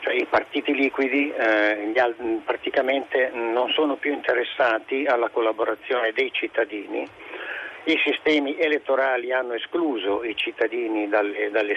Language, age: Italian, 50-69